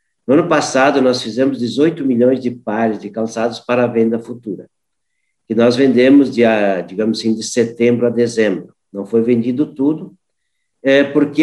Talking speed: 160 wpm